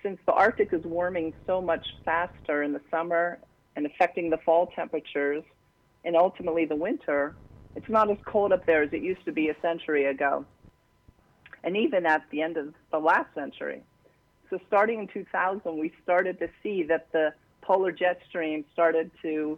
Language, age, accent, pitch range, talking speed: English, 40-59, American, 160-185 Hz, 180 wpm